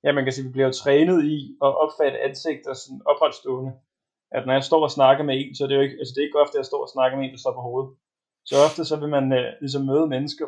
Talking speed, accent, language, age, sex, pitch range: 300 wpm, native, Danish, 20-39, male, 135-160 Hz